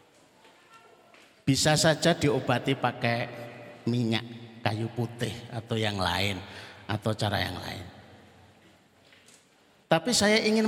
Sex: male